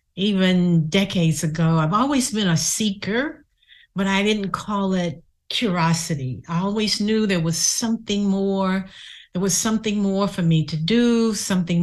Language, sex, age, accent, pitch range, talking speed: English, female, 50-69, American, 155-200 Hz, 150 wpm